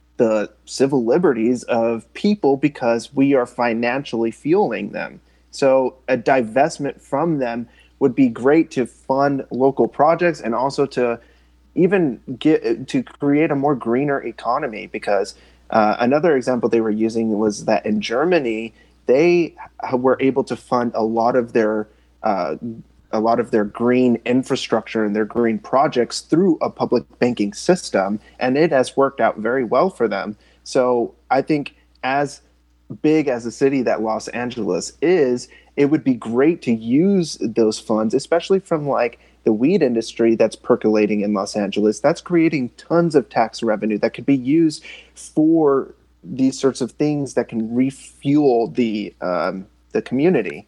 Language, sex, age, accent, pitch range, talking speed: English, male, 30-49, American, 110-145 Hz, 155 wpm